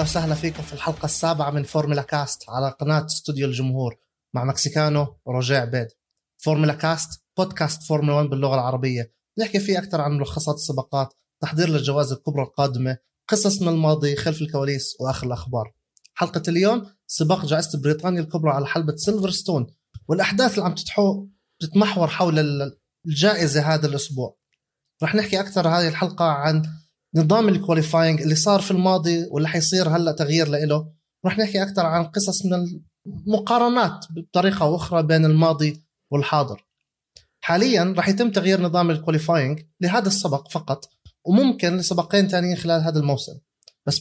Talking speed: 140 wpm